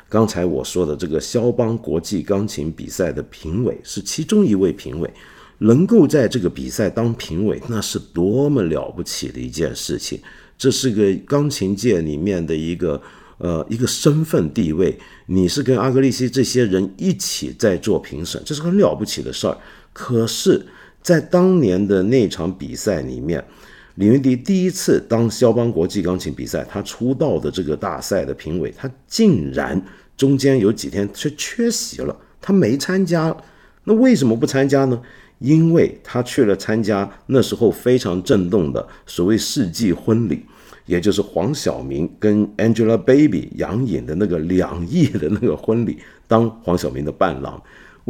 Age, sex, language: 50-69, male, Chinese